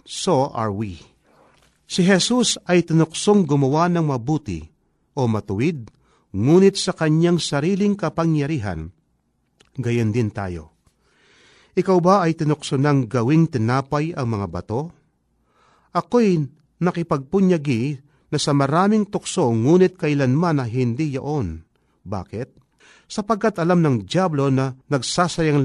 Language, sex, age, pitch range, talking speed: Filipino, male, 40-59, 125-175 Hz, 110 wpm